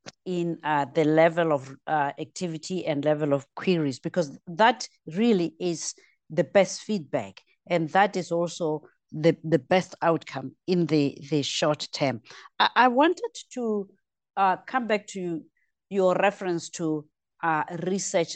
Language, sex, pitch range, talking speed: English, female, 155-200 Hz, 140 wpm